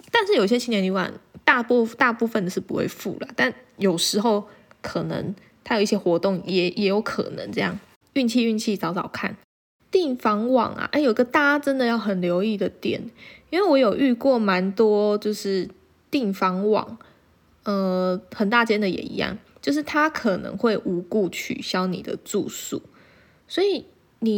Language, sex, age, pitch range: Chinese, female, 20-39, 190-260 Hz